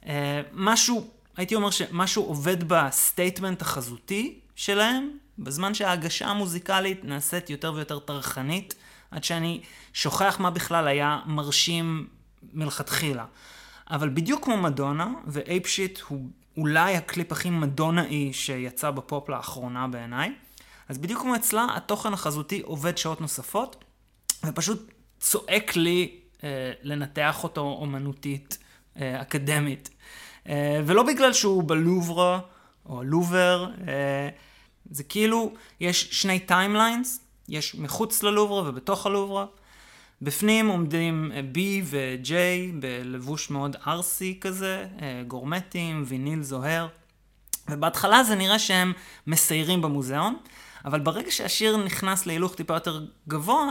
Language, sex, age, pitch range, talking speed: Hebrew, male, 20-39, 145-190 Hz, 110 wpm